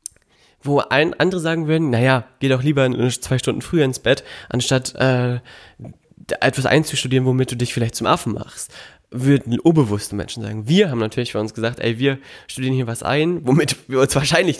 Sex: male